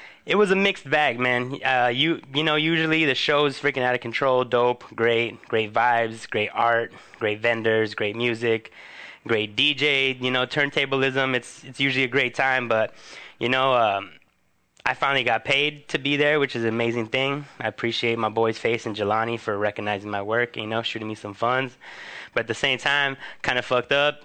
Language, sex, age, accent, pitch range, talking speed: English, male, 20-39, American, 110-135 Hz, 200 wpm